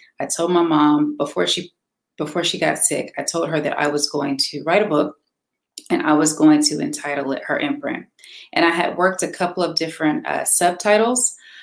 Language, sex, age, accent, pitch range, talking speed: English, female, 30-49, American, 140-180 Hz, 205 wpm